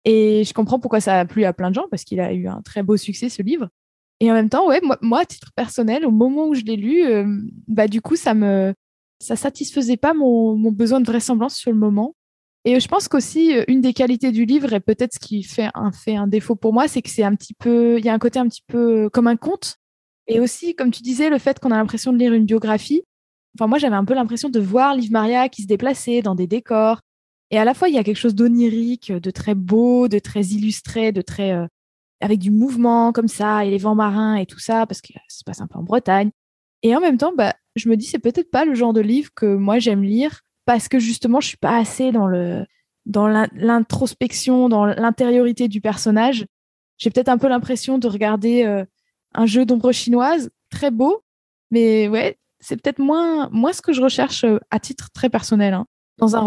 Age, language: 20-39, French